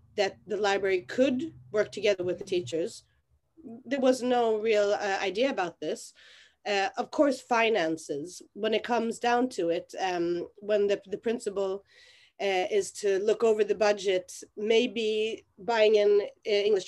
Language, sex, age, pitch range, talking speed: English, female, 30-49, 185-240 Hz, 155 wpm